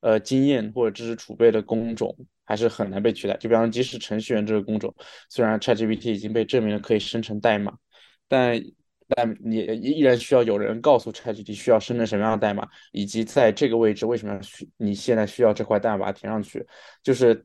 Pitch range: 105-115 Hz